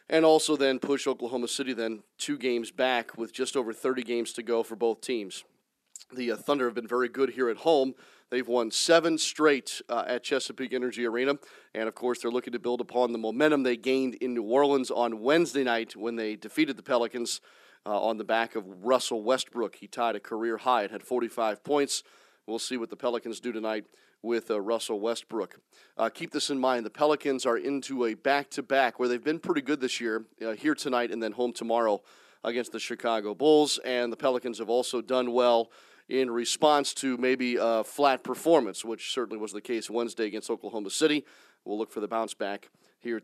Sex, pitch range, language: male, 115-140 Hz, English